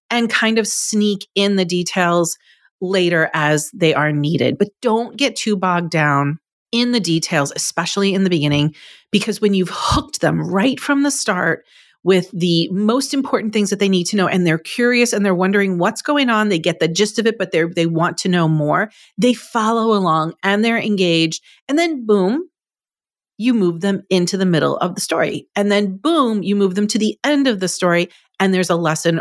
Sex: female